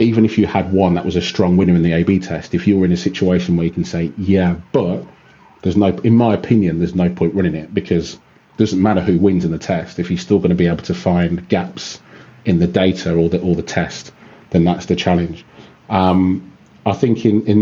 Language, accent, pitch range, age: English, British, 85-95 Hz, 30-49